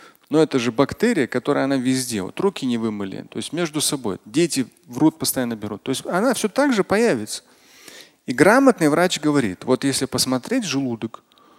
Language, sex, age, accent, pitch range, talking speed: Russian, male, 30-49, native, 130-175 Hz, 170 wpm